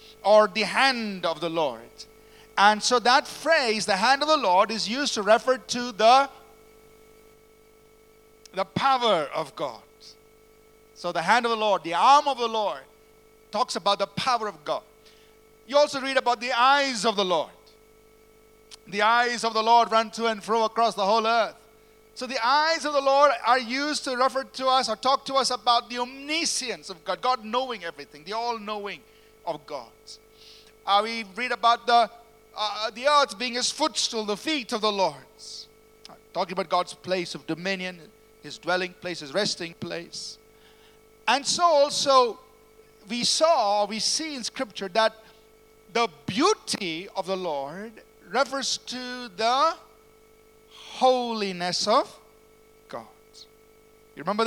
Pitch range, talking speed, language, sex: 215-245 Hz, 160 wpm, English, male